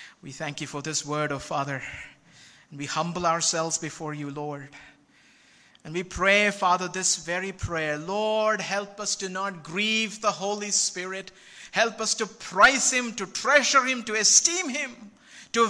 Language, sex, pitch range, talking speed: Malayalam, male, 185-220 Hz, 170 wpm